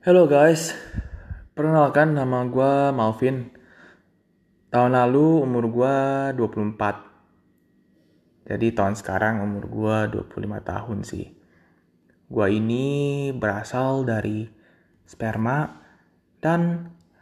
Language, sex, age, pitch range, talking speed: Indonesian, male, 20-39, 110-145 Hz, 85 wpm